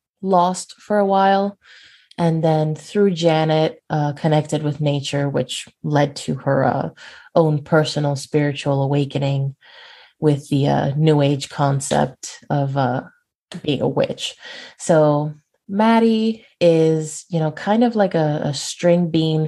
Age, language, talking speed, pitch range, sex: 20-39, English, 135 wpm, 145-175 Hz, female